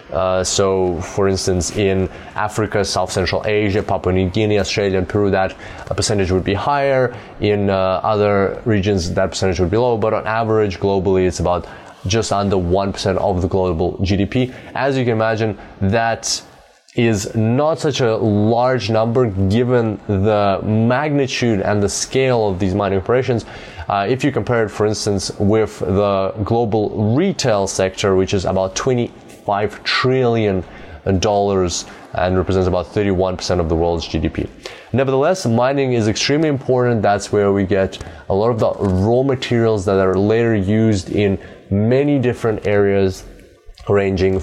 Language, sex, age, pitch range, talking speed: English, male, 20-39, 95-115 Hz, 155 wpm